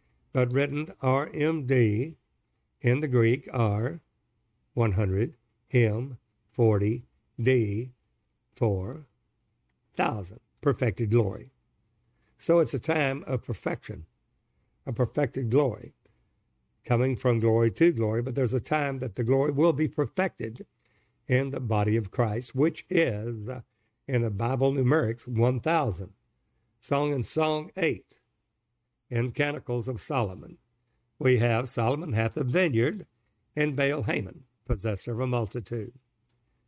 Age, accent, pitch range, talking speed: 60-79, American, 115-135 Hz, 110 wpm